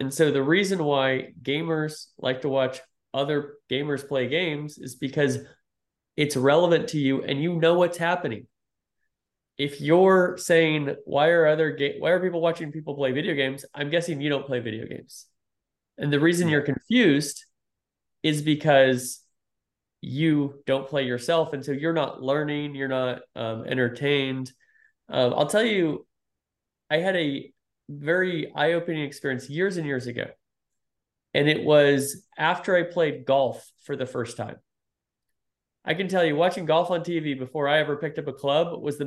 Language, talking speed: English, 165 wpm